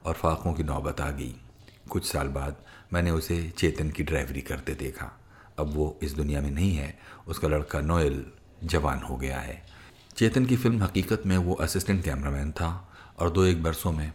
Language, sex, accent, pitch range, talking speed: Hindi, male, native, 75-90 Hz, 185 wpm